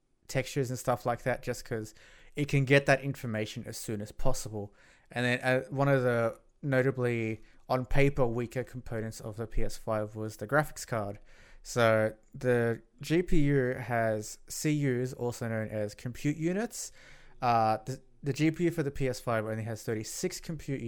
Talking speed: 160 wpm